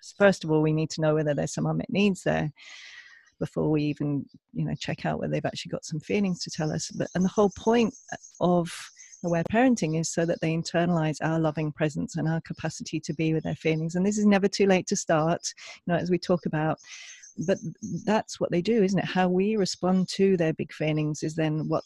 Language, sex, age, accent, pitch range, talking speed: English, female, 40-59, British, 160-190 Hz, 230 wpm